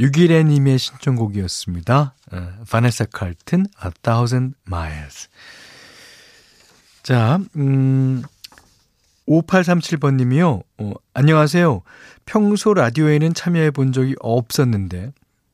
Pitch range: 100-145 Hz